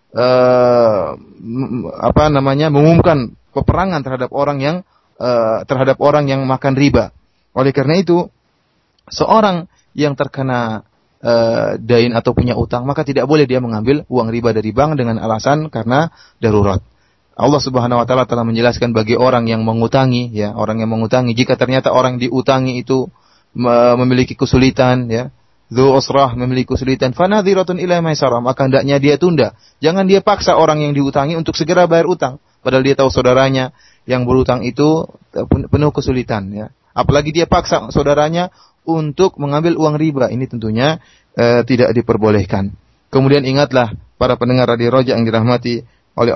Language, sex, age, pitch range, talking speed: Malay, male, 30-49, 120-145 Hz, 145 wpm